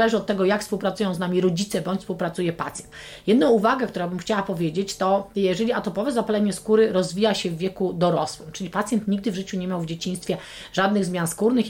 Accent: native